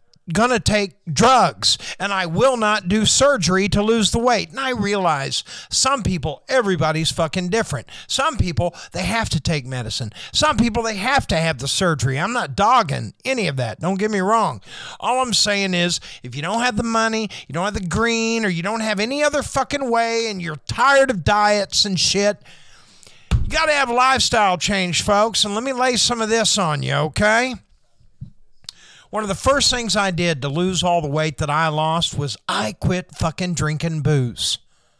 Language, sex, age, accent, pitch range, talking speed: English, male, 50-69, American, 155-215 Hz, 195 wpm